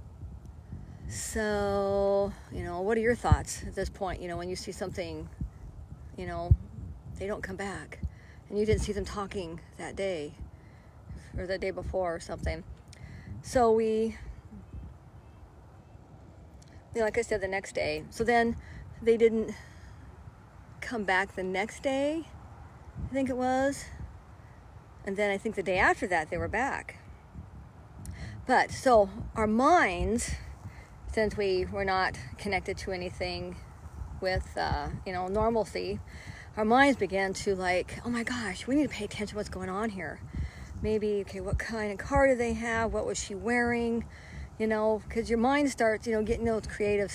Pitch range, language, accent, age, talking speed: 185-230 Hz, English, American, 50-69, 160 wpm